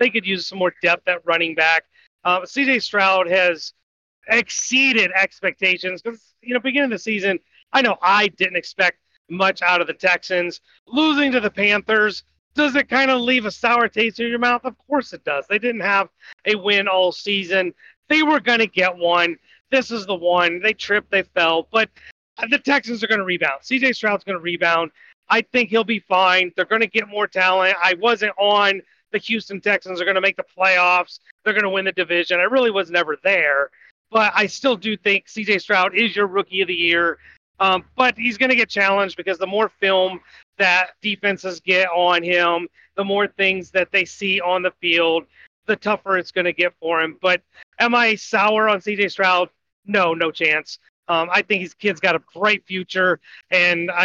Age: 30-49